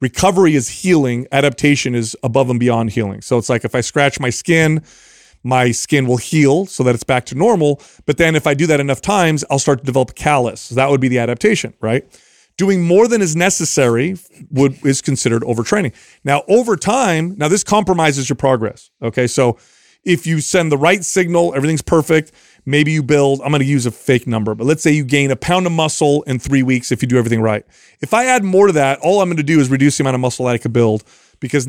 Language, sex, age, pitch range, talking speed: English, male, 30-49, 125-170 Hz, 235 wpm